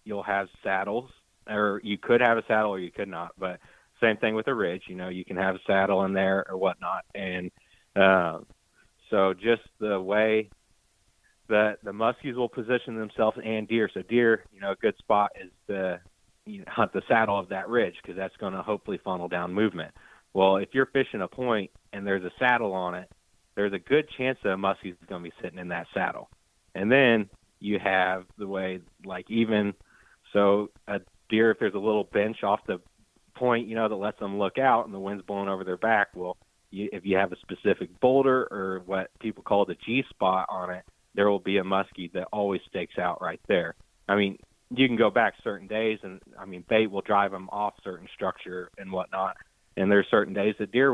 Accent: American